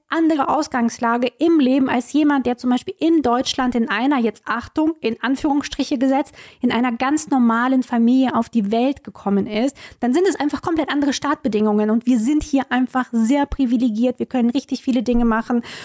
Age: 20-39